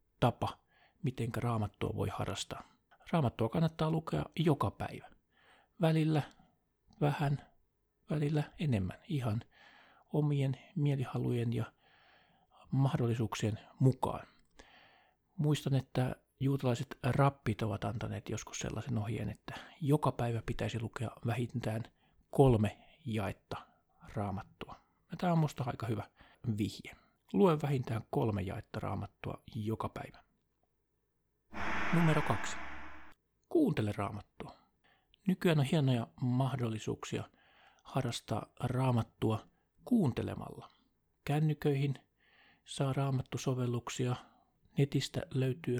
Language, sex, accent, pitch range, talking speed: Finnish, male, native, 110-140 Hz, 90 wpm